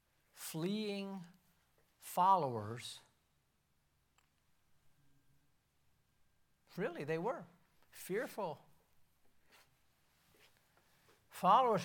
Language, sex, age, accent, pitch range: English, male, 60-79, American, 130-195 Hz